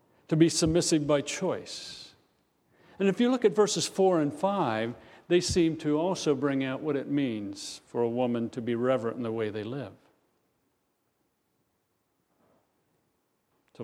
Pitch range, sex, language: 125-165 Hz, male, English